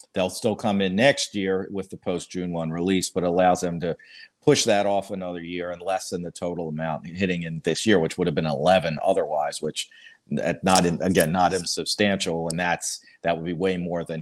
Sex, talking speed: male, 215 wpm